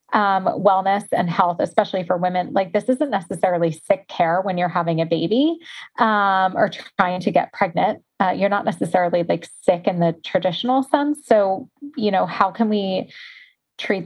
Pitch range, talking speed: 180-225 Hz, 175 wpm